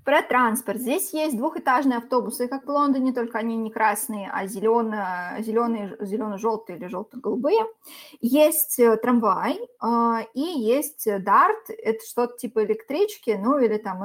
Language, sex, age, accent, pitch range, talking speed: Russian, female, 20-39, native, 220-265 Hz, 130 wpm